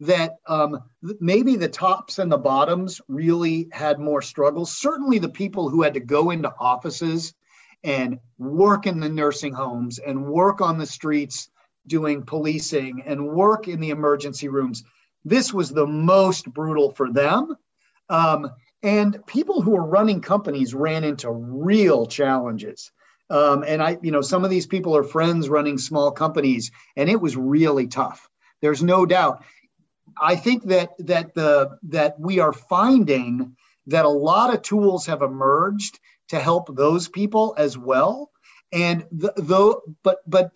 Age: 40-59